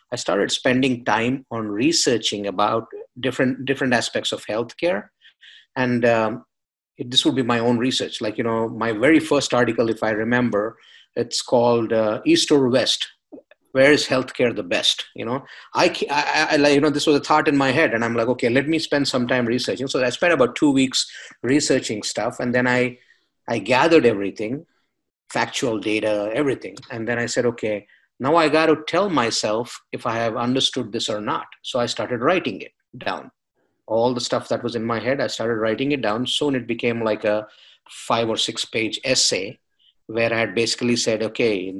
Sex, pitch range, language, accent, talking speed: male, 110-135 Hz, English, Indian, 195 wpm